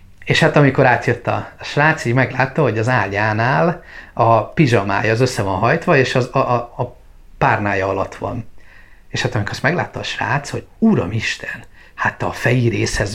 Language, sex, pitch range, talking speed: Hungarian, male, 105-135 Hz, 185 wpm